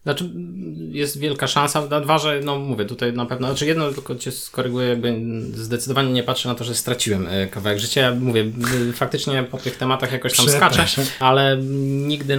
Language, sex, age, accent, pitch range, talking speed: Polish, male, 20-39, native, 105-130 Hz, 190 wpm